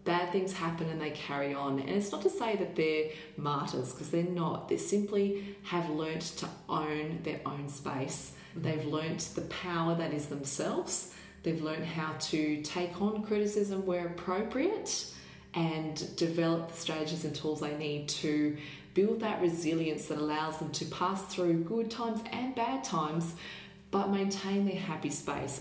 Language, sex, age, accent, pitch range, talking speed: English, female, 20-39, Australian, 150-185 Hz, 165 wpm